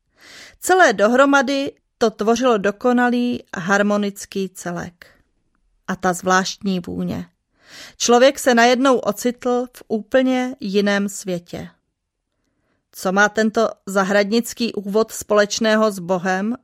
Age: 30-49